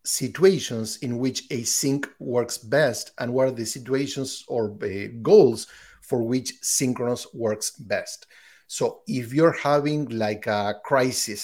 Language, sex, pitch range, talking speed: English, male, 115-135 Hz, 140 wpm